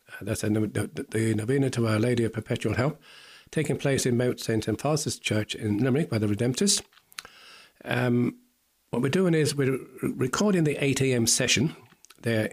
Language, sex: English, male